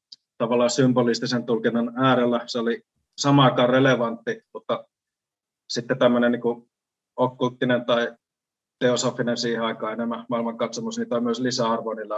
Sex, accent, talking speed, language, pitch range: male, native, 120 wpm, Finnish, 115-130 Hz